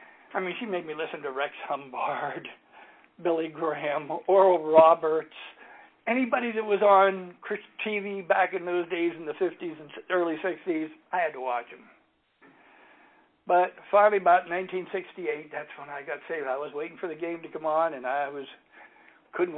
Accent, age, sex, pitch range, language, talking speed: American, 60-79, male, 165-205 Hz, English, 170 wpm